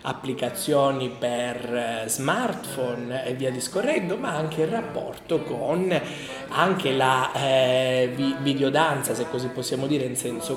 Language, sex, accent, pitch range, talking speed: Italian, male, native, 130-175 Hz, 120 wpm